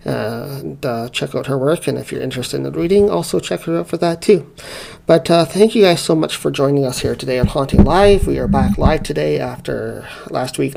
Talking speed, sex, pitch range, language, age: 245 wpm, male, 120-175 Hz, English, 40-59